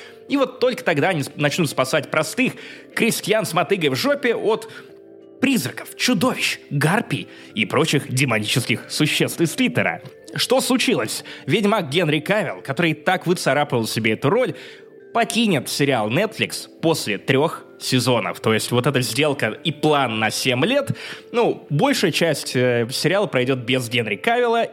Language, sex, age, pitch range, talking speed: Russian, male, 20-39, 130-205 Hz, 140 wpm